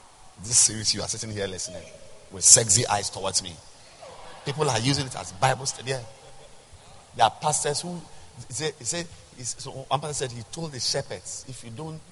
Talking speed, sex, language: 160 wpm, male, English